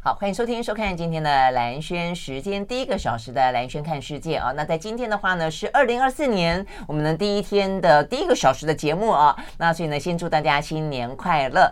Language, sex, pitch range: Chinese, female, 140-190 Hz